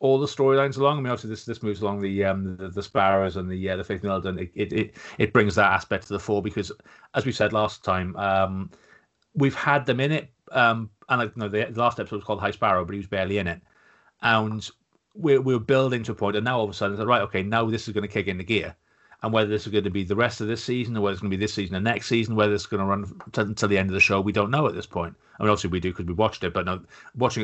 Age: 30-49